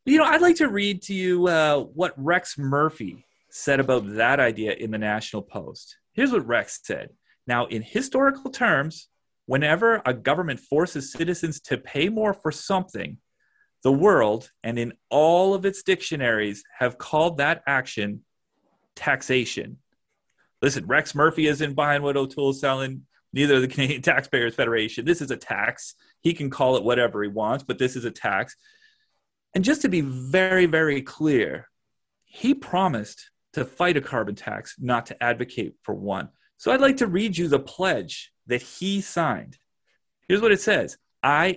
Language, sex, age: English, male, 30-49